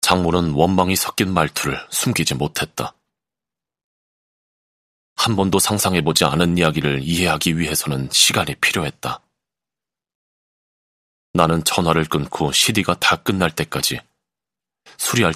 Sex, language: male, Korean